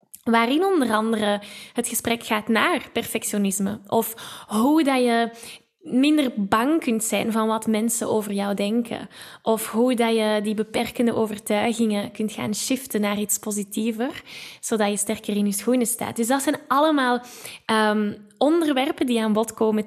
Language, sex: Dutch, female